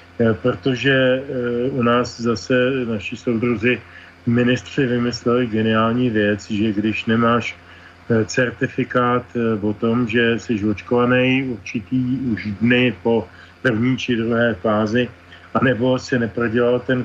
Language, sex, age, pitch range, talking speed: Slovak, male, 40-59, 105-125 Hz, 110 wpm